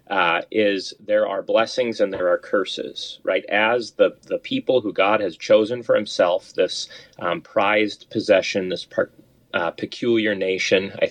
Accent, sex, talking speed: American, male, 160 wpm